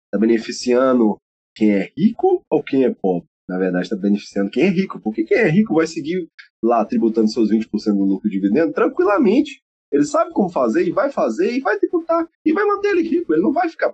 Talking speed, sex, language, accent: 215 wpm, male, Portuguese, Brazilian